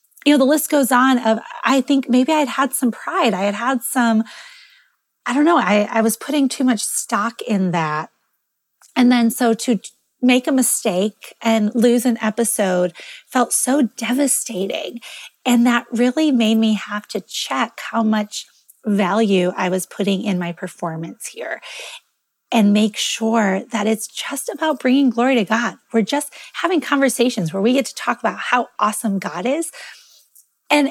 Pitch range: 210-275 Hz